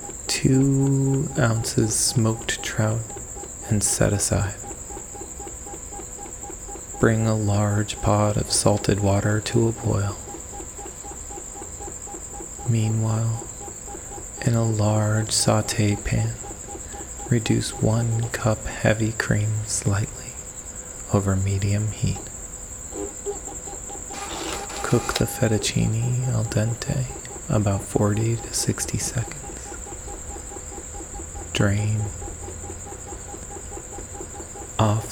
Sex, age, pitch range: male, 30-49, 100-120 Hz